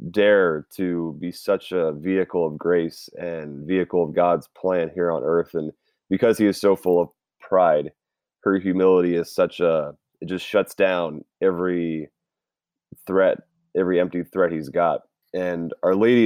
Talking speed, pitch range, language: 160 wpm, 85-105 Hz, English